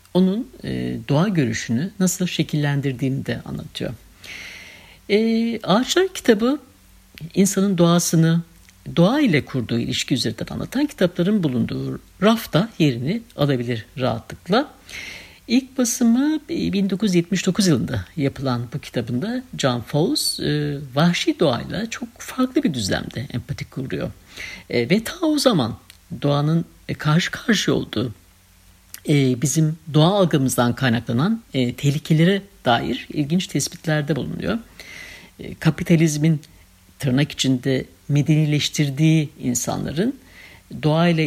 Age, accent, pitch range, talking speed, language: 60-79, native, 125-175 Hz, 100 wpm, Turkish